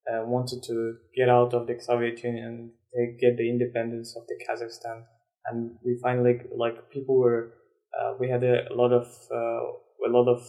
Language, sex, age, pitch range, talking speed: English, male, 20-39, 120-130 Hz, 190 wpm